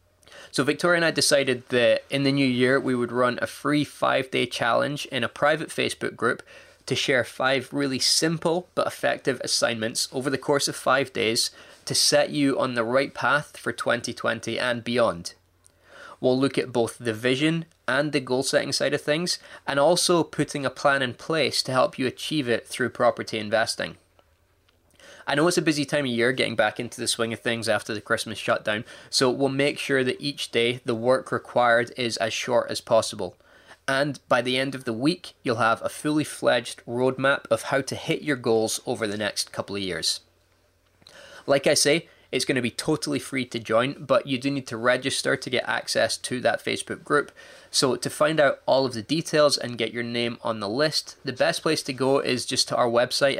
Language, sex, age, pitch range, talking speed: English, male, 20-39, 115-145 Hz, 205 wpm